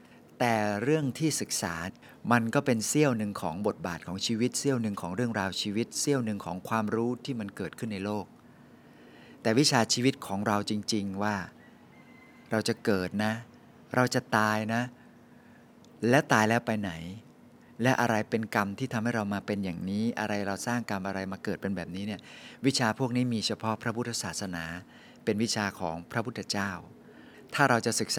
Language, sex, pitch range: Thai, male, 100-120 Hz